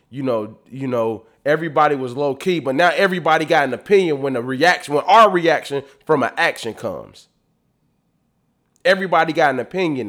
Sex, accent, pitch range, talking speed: male, American, 135-190 Hz, 165 wpm